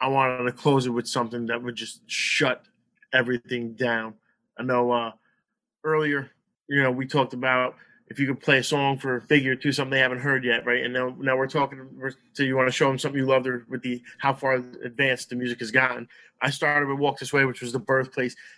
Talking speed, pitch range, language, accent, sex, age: 235 wpm, 125-145 Hz, English, American, male, 30-49